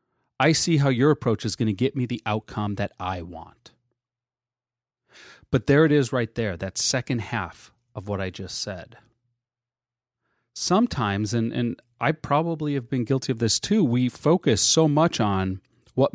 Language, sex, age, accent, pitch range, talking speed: English, male, 30-49, American, 115-150 Hz, 170 wpm